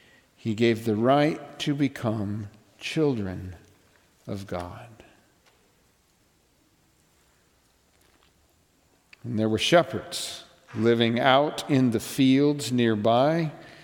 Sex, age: male, 50-69